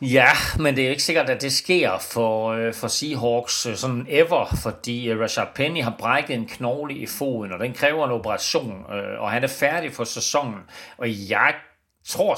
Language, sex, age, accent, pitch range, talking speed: Danish, male, 40-59, native, 115-135 Hz, 180 wpm